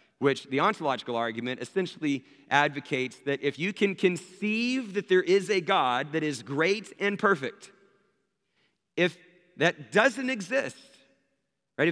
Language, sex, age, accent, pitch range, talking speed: English, male, 40-59, American, 140-195 Hz, 130 wpm